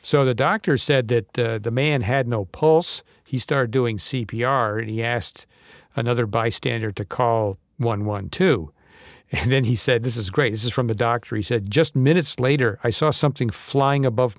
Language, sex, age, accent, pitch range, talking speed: English, male, 50-69, American, 115-135 Hz, 190 wpm